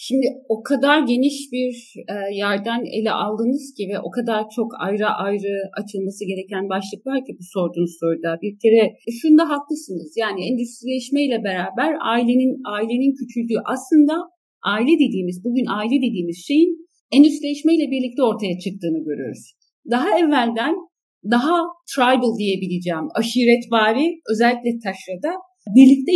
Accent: native